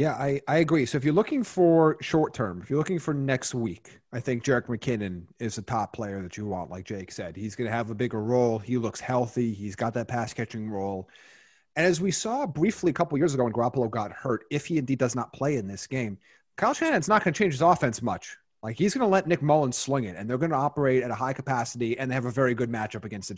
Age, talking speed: 30-49, 265 wpm